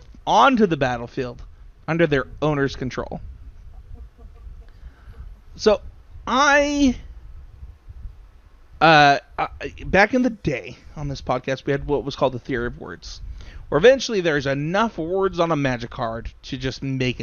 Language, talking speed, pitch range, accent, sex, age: English, 130 wpm, 115-170 Hz, American, male, 30-49